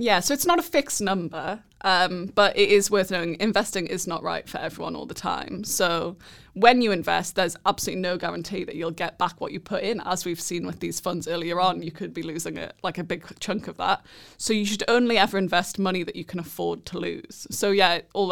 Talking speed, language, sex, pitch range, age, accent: 240 wpm, English, female, 175-205 Hz, 20-39, British